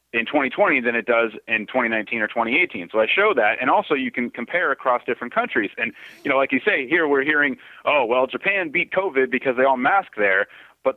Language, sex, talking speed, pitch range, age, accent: English, male, 225 wpm, 115-155 Hz, 30-49, American